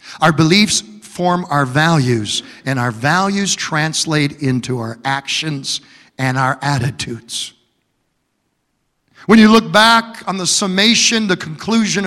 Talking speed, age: 120 wpm, 50-69